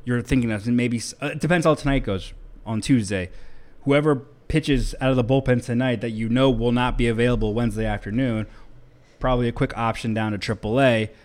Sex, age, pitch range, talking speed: male, 20-39, 110-130 Hz, 185 wpm